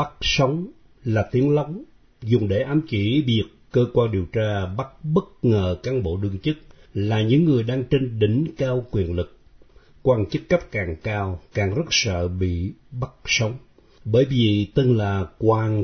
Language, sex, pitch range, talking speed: Vietnamese, male, 100-135 Hz, 175 wpm